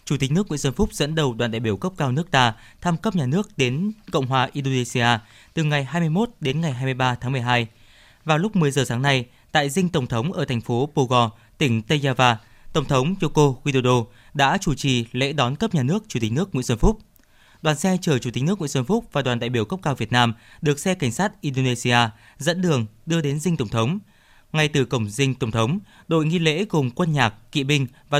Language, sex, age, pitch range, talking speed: Vietnamese, male, 20-39, 120-165 Hz, 235 wpm